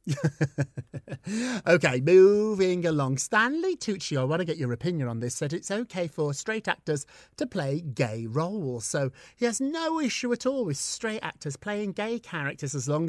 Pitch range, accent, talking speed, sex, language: 140-220 Hz, British, 175 wpm, male, English